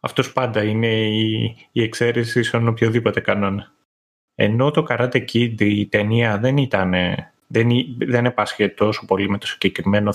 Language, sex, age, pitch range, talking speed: Greek, male, 30-49, 110-130 Hz, 140 wpm